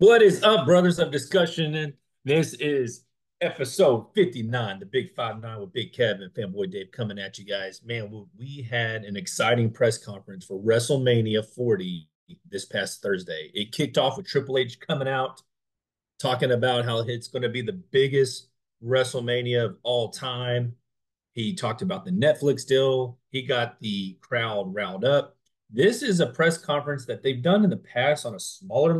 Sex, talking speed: male, 175 wpm